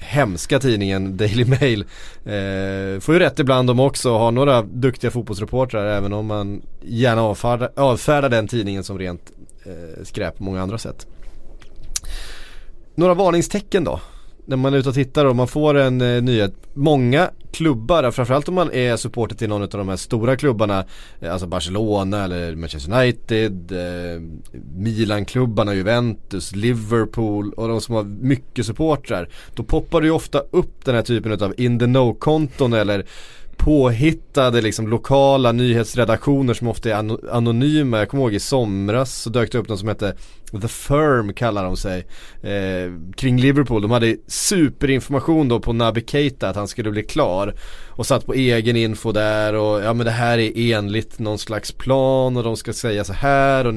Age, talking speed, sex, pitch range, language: 30-49, 165 wpm, male, 100-130 Hz, Swedish